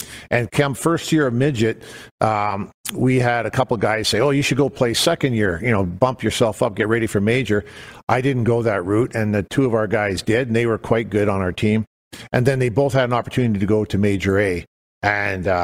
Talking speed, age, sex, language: 240 wpm, 50-69, male, English